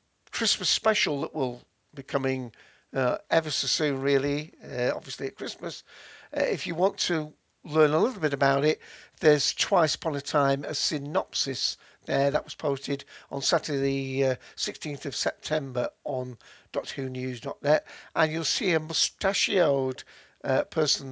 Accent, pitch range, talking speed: British, 135-160 Hz, 155 wpm